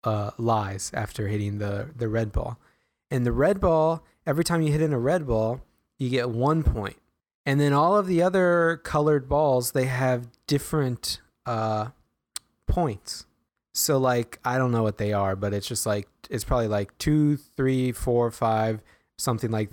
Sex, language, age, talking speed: male, English, 20-39, 180 wpm